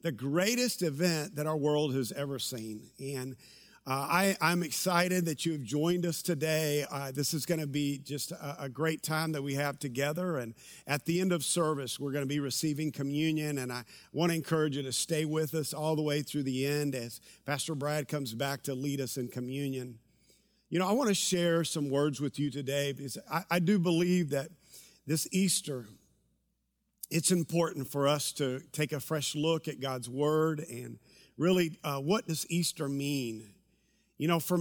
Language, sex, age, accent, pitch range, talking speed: English, male, 50-69, American, 140-170 Hz, 185 wpm